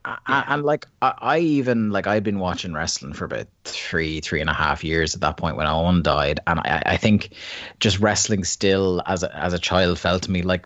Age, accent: 30-49, Irish